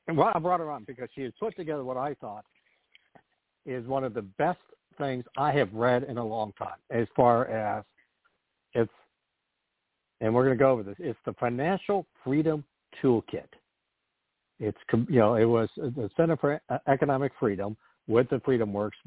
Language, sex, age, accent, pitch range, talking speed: English, male, 60-79, American, 115-145 Hz, 175 wpm